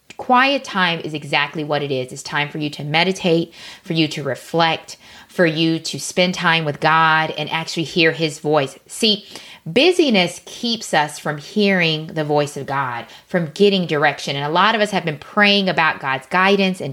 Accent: American